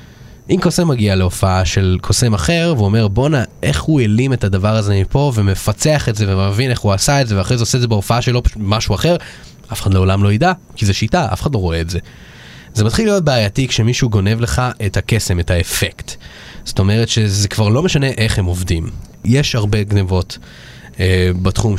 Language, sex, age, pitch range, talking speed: Hebrew, male, 20-39, 100-125 Hz, 205 wpm